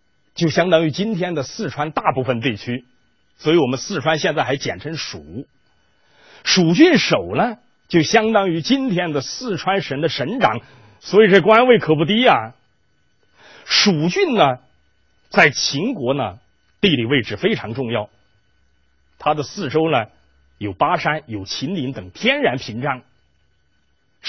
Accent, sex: native, male